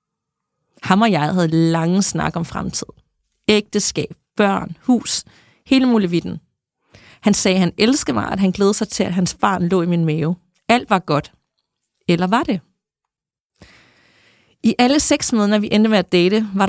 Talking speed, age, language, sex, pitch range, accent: 170 wpm, 30-49, Danish, female, 175-215 Hz, native